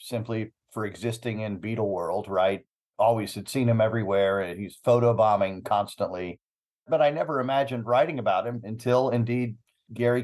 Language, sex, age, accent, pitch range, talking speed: English, male, 50-69, American, 105-125 Hz, 145 wpm